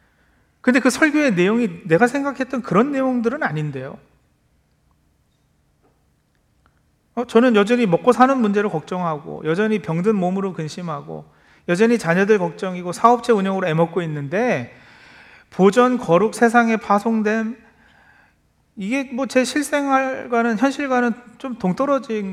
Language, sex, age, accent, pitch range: Korean, male, 40-59, native, 165-235 Hz